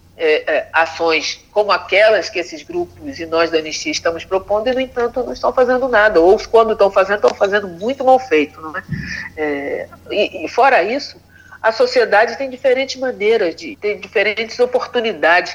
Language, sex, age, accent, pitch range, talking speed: Portuguese, female, 40-59, Brazilian, 160-255 Hz, 180 wpm